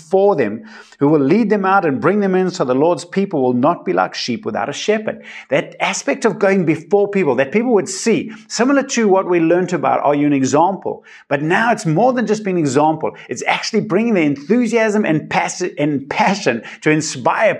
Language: English